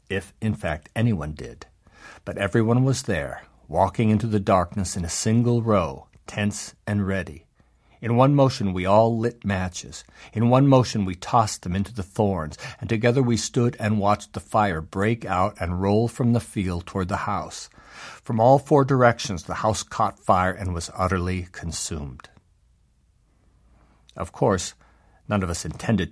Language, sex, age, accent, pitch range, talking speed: English, male, 60-79, American, 90-115 Hz, 165 wpm